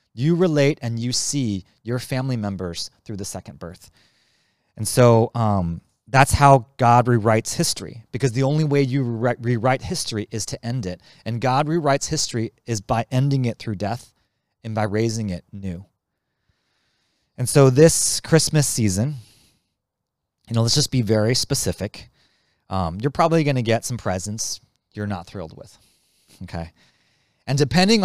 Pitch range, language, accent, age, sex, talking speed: 105-135 Hz, English, American, 30-49, male, 155 wpm